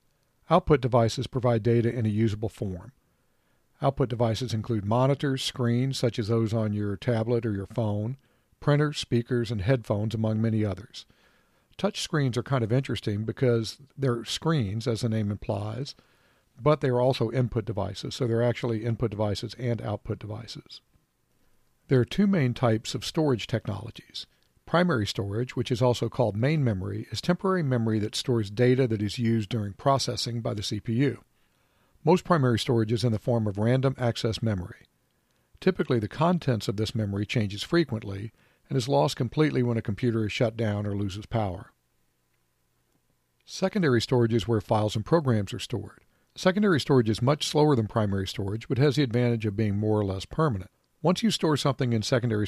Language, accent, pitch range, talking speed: English, American, 110-130 Hz, 170 wpm